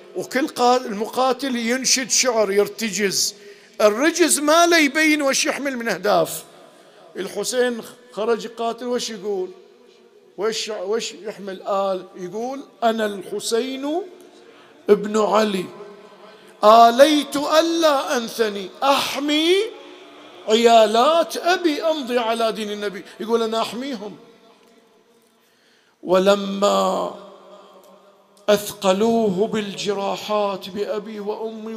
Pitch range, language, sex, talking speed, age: 215-275 Hz, Arabic, male, 85 wpm, 50-69